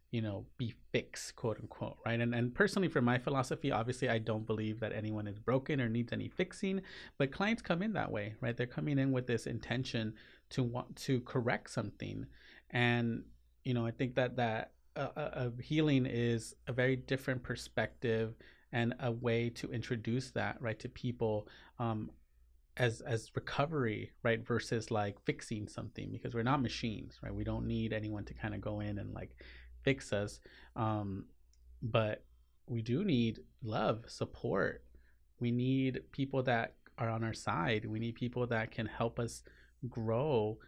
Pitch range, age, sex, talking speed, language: 110-125 Hz, 30-49, male, 175 wpm, English